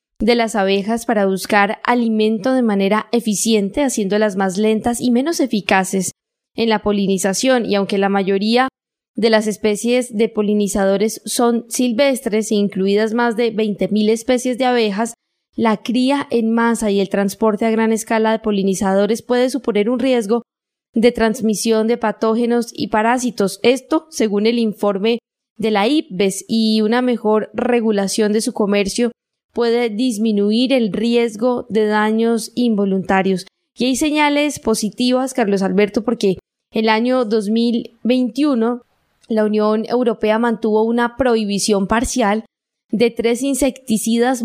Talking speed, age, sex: 135 wpm, 10-29, female